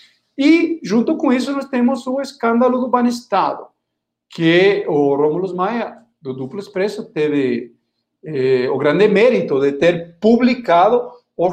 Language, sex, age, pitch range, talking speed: Portuguese, male, 50-69, 155-245 Hz, 135 wpm